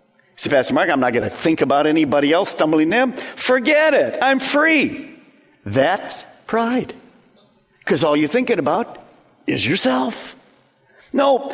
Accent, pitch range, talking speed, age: American, 195-285 Hz, 140 wpm, 50-69